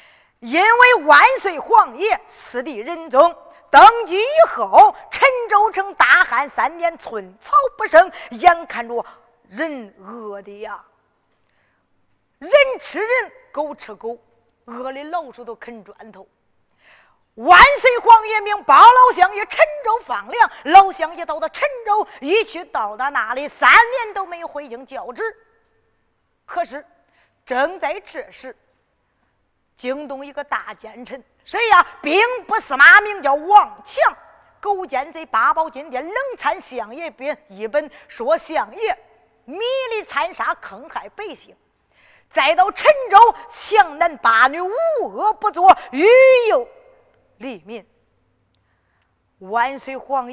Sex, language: female, Chinese